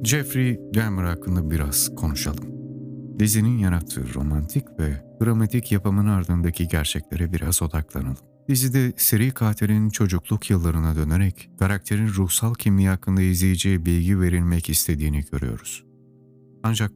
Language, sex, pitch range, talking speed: Turkish, male, 85-110 Hz, 110 wpm